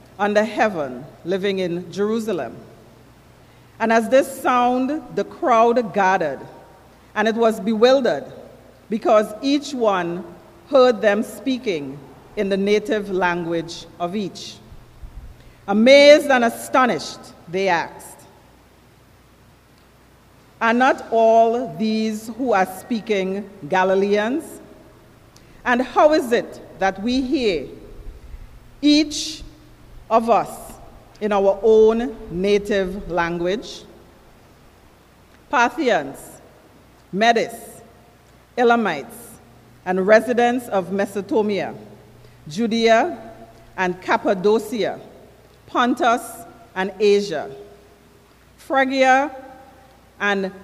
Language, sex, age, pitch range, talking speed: English, female, 40-59, 190-245 Hz, 85 wpm